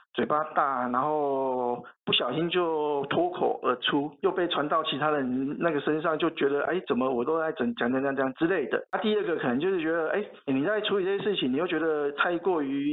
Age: 50-69